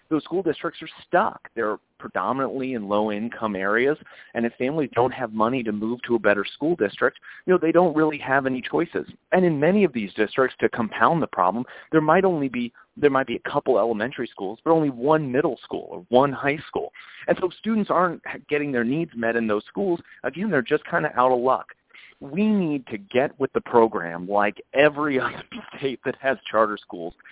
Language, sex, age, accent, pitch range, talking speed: English, male, 30-49, American, 110-140 Hz, 210 wpm